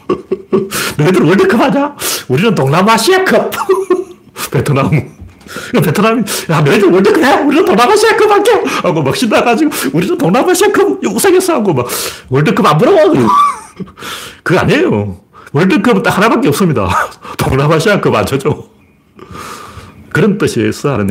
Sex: male